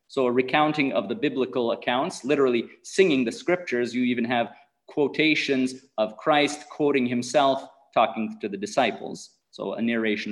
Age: 30-49